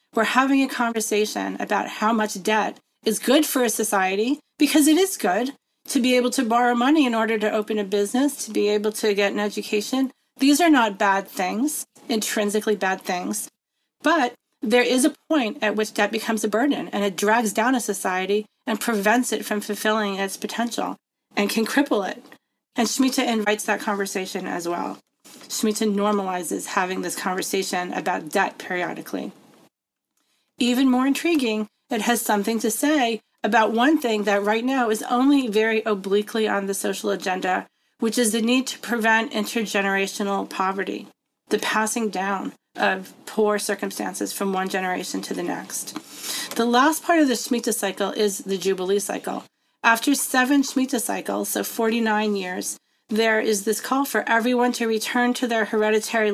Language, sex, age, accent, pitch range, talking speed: English, female, 30-49, American, 205-250 Hz, 170 wpm